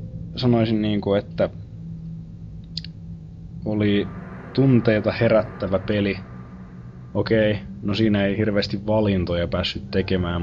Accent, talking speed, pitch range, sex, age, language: native, 100 wpm, 90-115 Hz, male, 20-39, Finnish